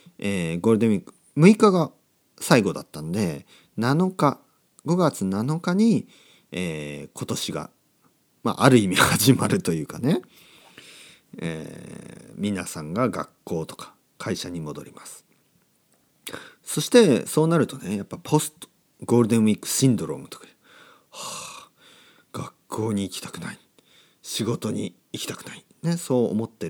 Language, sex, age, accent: Japanese, male, 40-59, native